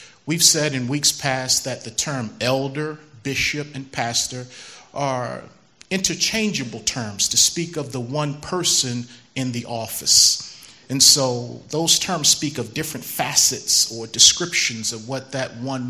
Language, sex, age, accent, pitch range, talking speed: English, male, 40-59, American, 120-150 Hz, 145 wpm